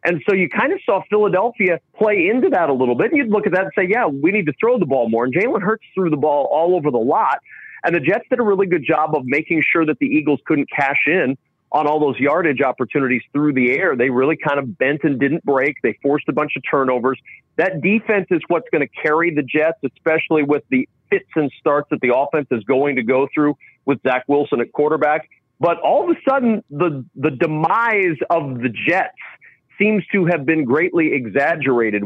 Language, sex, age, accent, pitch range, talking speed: English, male, 40-59, American, 145-205 Hz, 230 wpm